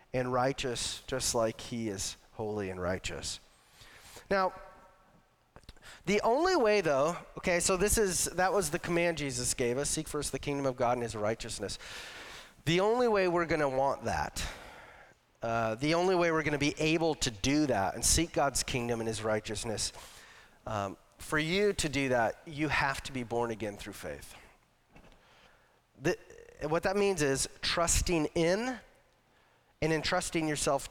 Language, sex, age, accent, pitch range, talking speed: English, male, 30-49, American, 120-185 Hz, 165 wpm